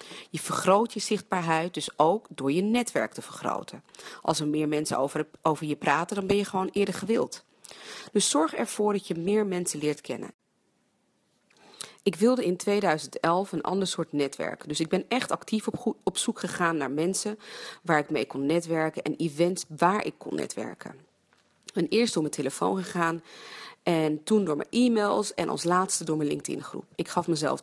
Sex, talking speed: female, 180 wpm